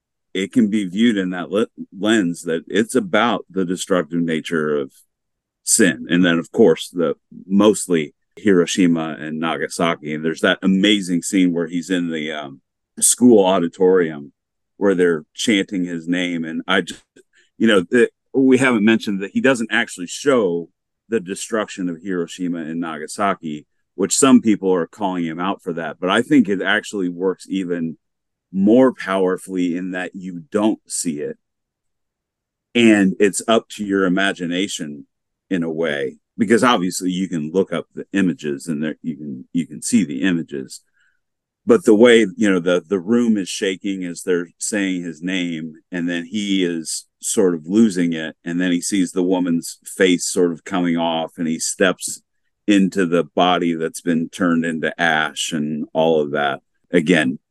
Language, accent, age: English, American, 40-59